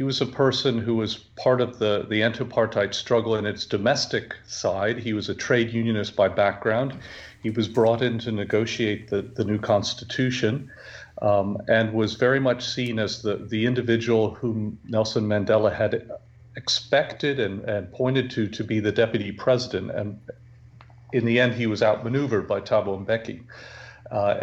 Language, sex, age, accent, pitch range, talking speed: English, male, 50-69, American, 105-125 Hz, 165 wpm